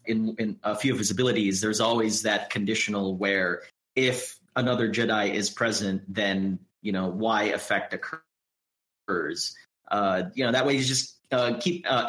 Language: English